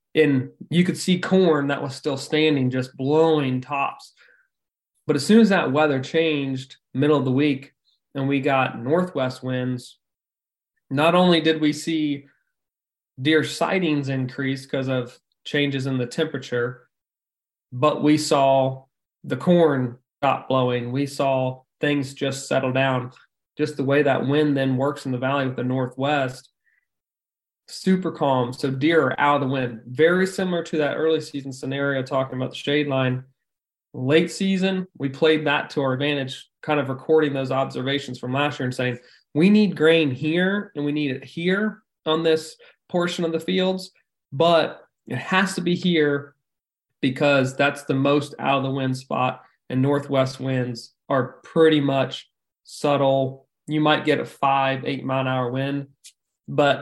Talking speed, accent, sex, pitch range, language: 165 wpm, American, male, 130-155 Hz, English